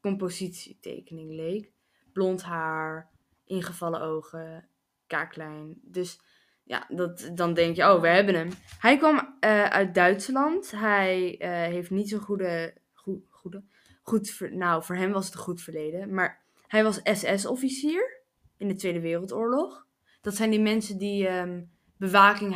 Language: Dutch